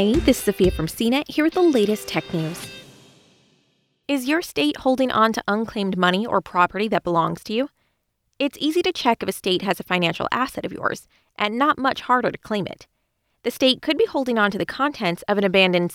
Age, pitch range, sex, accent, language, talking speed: 20-39, 185-250 Hz, female, American, English, 215 wpm